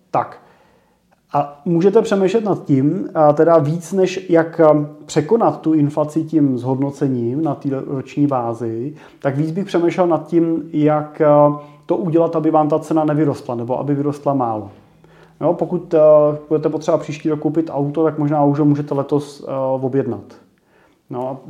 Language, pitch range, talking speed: Czech, 135-155 Hz, 150 wpm